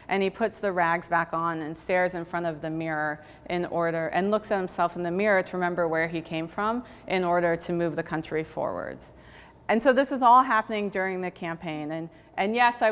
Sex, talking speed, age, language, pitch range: female, 230 wpm, 30-49, English, 165-205 Hz